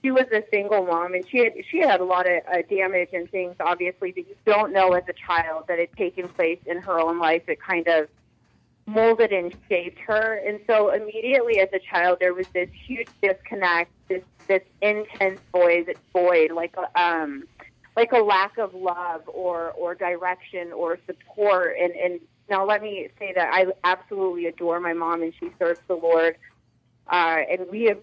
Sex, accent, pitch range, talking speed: female, American, 175-210 Hz, 195 wpm